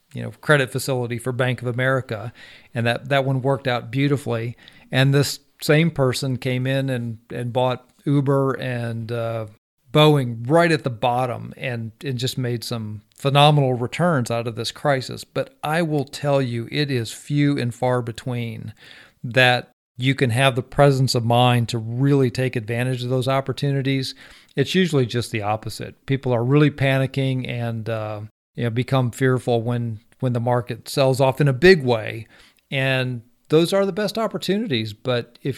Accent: American